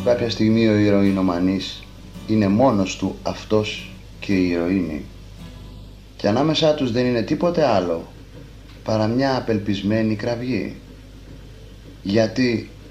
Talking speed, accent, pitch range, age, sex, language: 110 wpm, native, 100-125 Hz, 30-49, male, Greek